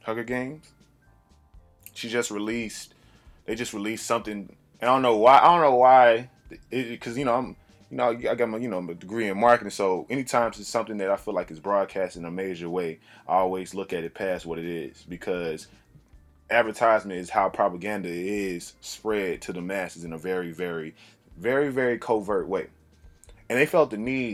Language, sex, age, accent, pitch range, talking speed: English, male, 20-39, American, 90-120 Hz, 200 wpm